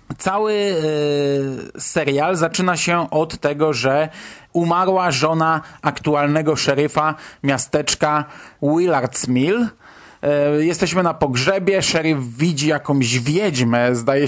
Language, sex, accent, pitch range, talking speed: Polish, male, native, 140-170 Hz, 90 wpm